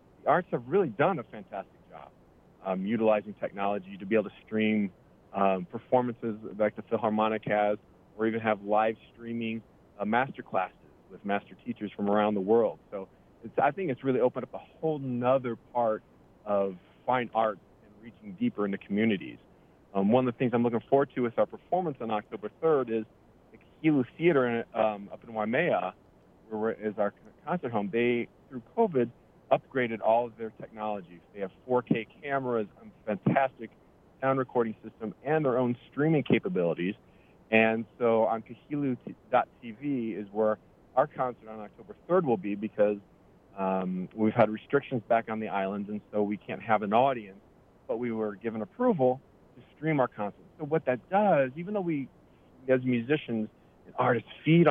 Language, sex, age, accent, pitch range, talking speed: English, male, 40-59, American, 105-130 Hz, 170 wpm